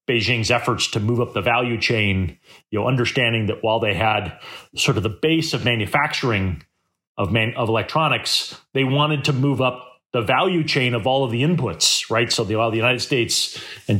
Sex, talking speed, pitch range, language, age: male, 195 wpm, 110-135 Hz, English, 30-49